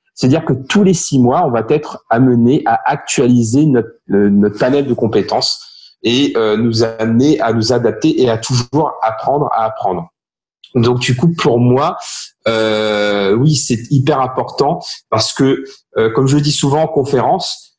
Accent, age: French, 40-59